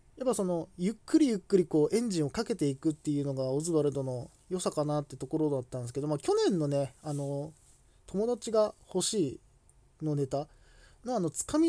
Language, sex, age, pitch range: Japanese, male, 20-39, 140-230 Hz